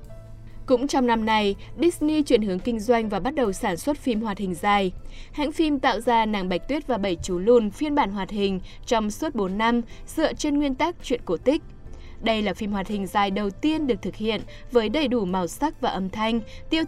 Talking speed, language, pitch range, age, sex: 230 wpm, Vietnamese, 190-245 Hz, 20-39, female